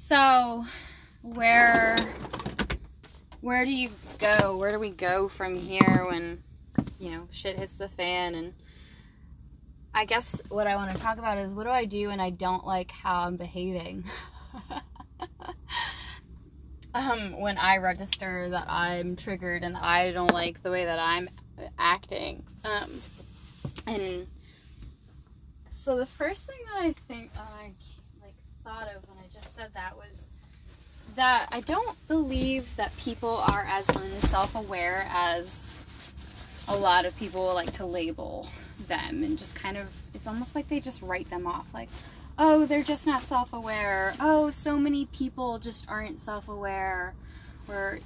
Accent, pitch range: American, 180-235 Hz